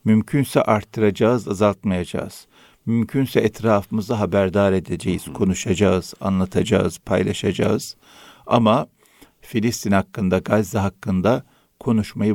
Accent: native